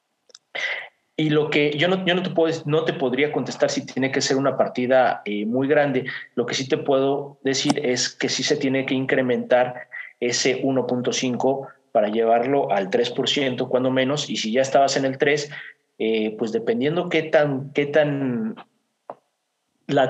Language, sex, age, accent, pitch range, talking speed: Spanish, male, 40-59, Mexican, 125-155 Hz, 175 wpm